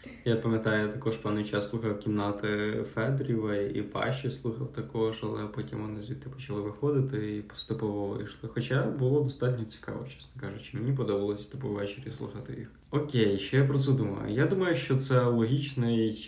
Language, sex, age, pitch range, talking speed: Ukrainian, male, 20-39, 105-130 Hz, 165 wpm